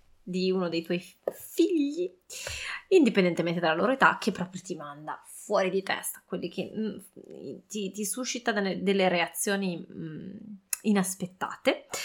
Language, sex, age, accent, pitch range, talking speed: Italian, female, 20-39, native, 180-220 Hz, 130 wpm